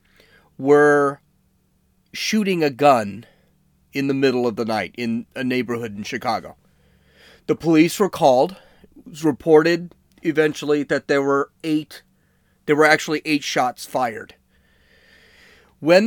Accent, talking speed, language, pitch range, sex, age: American, 120 wpm, English, 115-160 Hz, male, 40-59